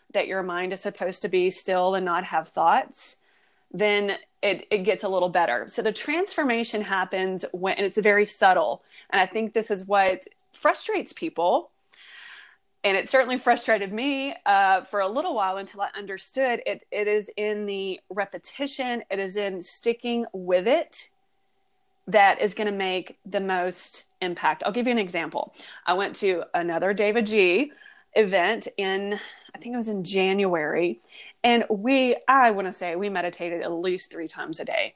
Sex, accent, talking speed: female, American, 175 wpm